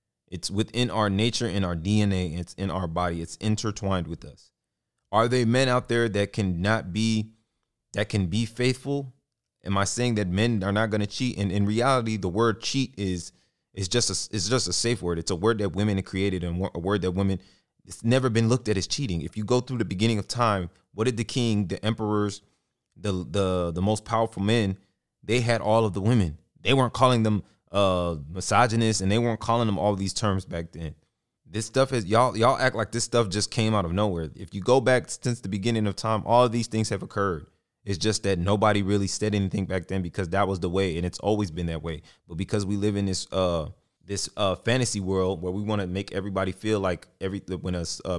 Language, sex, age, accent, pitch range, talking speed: English, male, 30-49, American, 95-115 Hz, 230 wpm